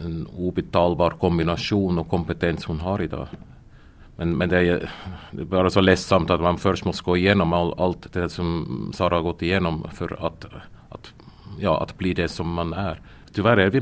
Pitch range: 90-110 Hz